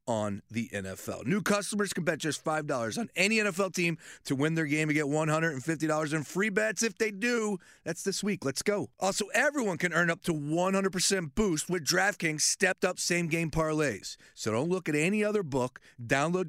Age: 40-59